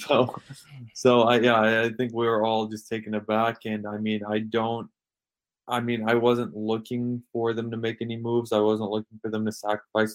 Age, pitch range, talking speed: 20-39, 105-120 Hz, 205 wpm